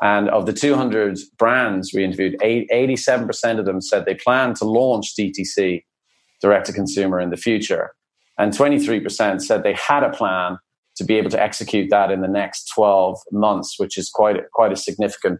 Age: 30-49